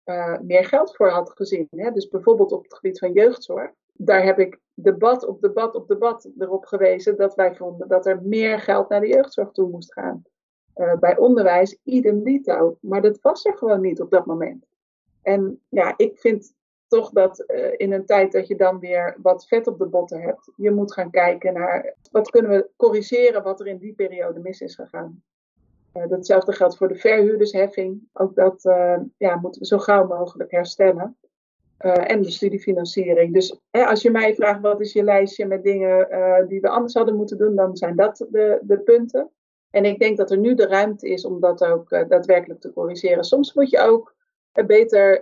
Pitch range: 185-235 Hz